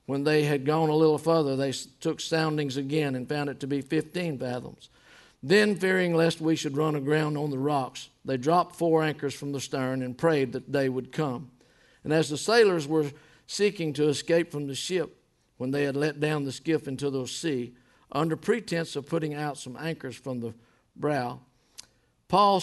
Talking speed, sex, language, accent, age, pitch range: 195 wpm, male, English, American, 50-69, 140-170 Hz